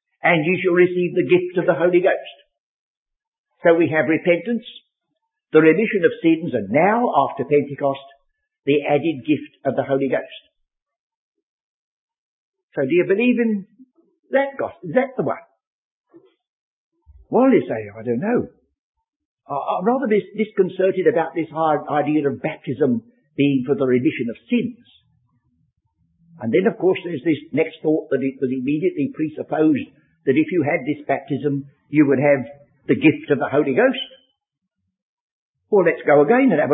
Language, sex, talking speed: English, male, 155 wpm